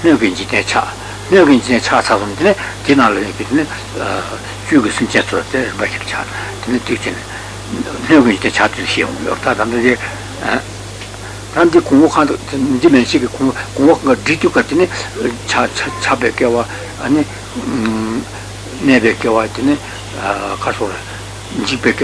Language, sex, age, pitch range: Italian, male, 60-79, 100-120 Hz